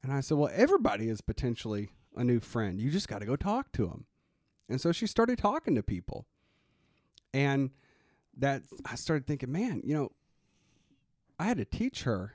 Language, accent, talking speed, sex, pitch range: English, American, 185 wpm, male, 120-155 Hz